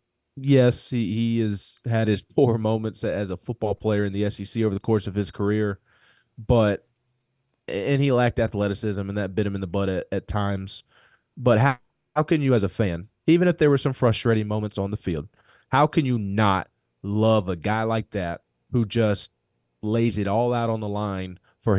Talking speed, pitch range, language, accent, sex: 200 wpm, 100-125 Hz, English, American, male